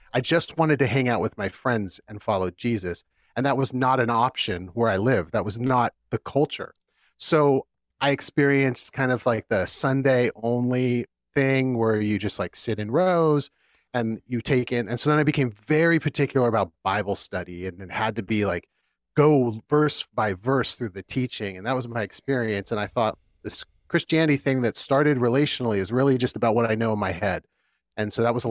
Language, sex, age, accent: English, male, 40-59, American